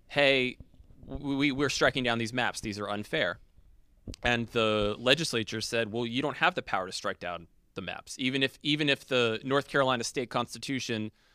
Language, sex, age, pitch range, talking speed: English, male, 20-39, 105-130 Hz, 180 wpm